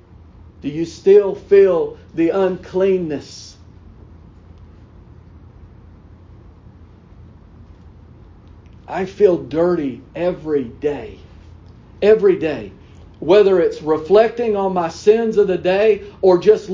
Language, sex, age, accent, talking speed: English, male, 50-69, American, 85 wpm